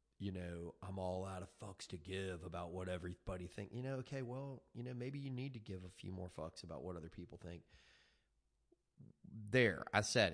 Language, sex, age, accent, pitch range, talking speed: English, male, 30-49, American, 85-100 Hz, 210 wpm